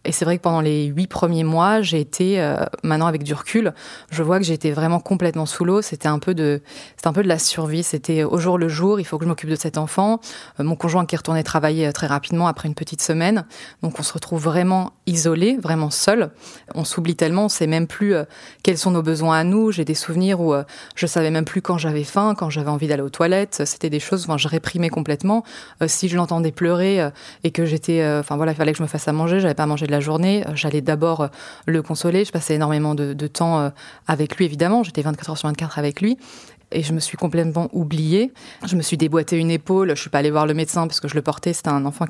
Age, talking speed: 20-39, 260 wpm